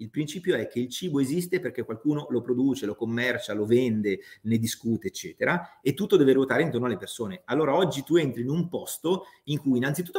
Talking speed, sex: 205 wpm, male